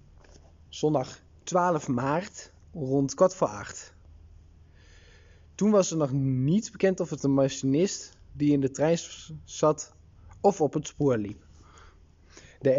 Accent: Dutch